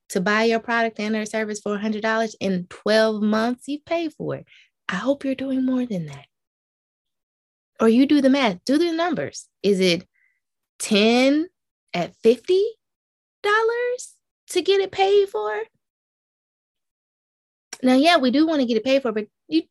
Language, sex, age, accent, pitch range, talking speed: English, female, 20-39, American, 195-280 Hz, 160 wpm